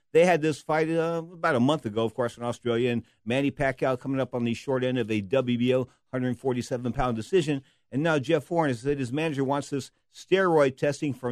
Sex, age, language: male, 50-69, English